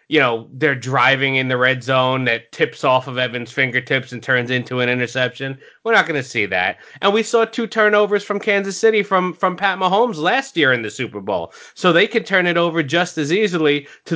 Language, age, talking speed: English, 20-39, 225 wpm